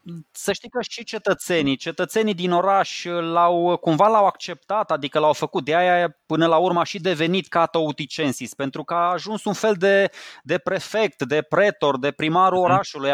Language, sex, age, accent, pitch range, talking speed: Romanian, male, 20-39, native, 145-190 Hz, 170 wpm